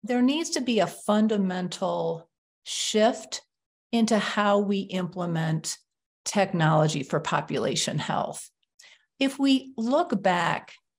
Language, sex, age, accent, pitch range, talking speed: English, female, 50-69, American, 175-220 Hz, 105 wpm